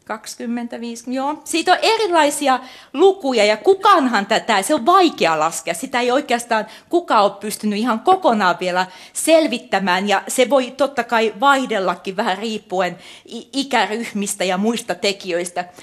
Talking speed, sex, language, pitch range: 135 wpm, female, Finnish, 180-260 Hz